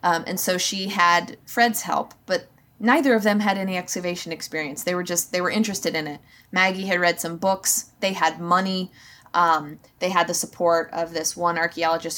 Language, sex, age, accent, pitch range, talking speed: English, female, 20-39, American, 165-205 Hz, 195 wpm